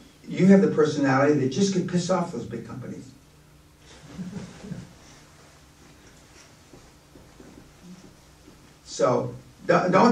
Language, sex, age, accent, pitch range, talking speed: English, male, 50-69, American, 130-170 Hz, 90 wpm